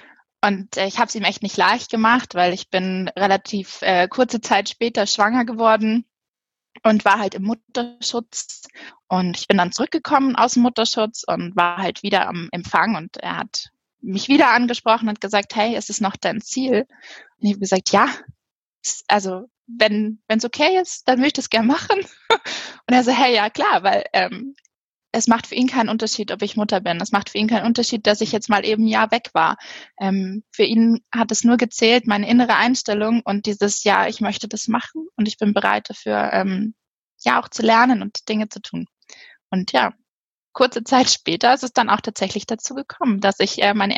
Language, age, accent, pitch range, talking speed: German, 20-39, German, 200-240 Hz, 195 wpm